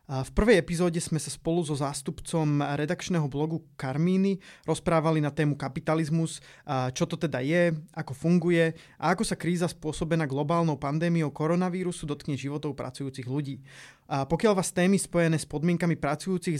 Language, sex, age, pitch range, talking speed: Slovak, male, 20-39, 145-175 Hz, 145 wpm